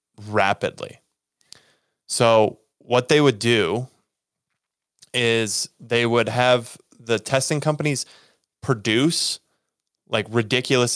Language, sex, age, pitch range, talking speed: English, male, 20-39, 105-120 Hz, 90 wpm